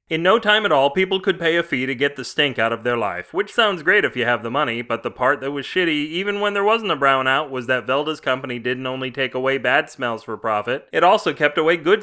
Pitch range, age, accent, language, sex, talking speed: 120-160 Hz, 30-49, American, English, male, 275 wpm